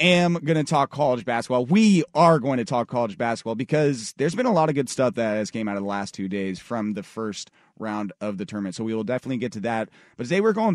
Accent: American